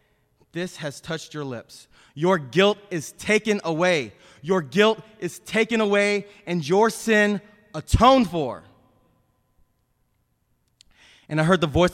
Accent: American